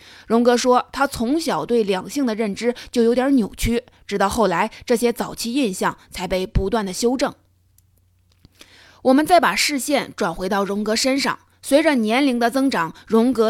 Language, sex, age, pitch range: Chinese, female, 20-39, 195-255 Hz